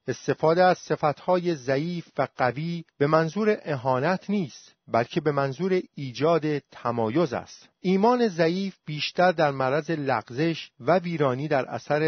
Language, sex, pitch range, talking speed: Persian, male, 130-175 Hz, 135 wpm